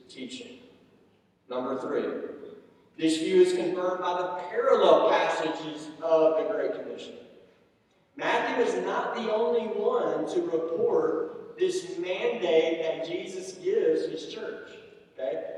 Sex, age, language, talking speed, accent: male, 50-69, English, 120 wpm, American